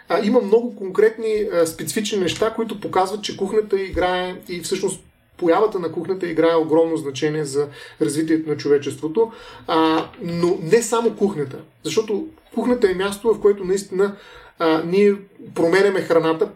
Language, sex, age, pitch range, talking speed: Bulgarian, male, 30-49, 155-210 Hz, 145 wpm